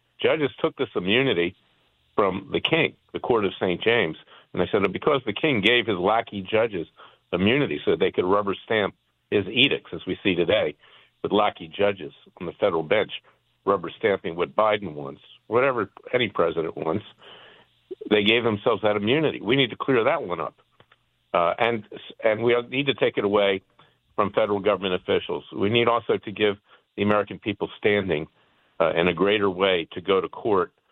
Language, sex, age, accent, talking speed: English, male, 50-69, American, 185 wpm